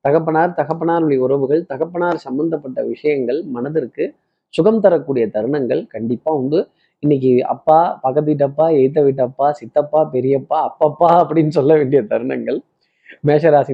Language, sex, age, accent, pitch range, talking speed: Tamil, male, 20-39, native, 135-185 Hz, 115 wpm